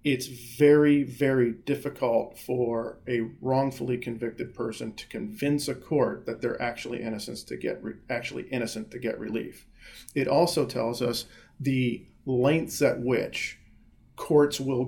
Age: 40-59